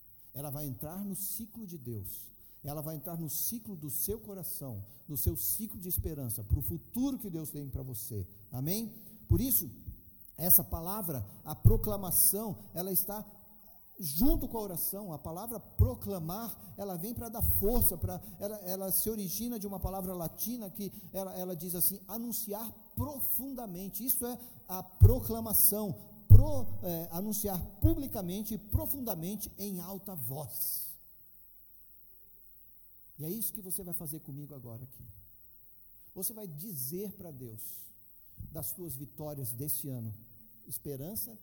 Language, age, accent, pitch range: Portuguese, 50-69, Brazilian, 130-200 Hz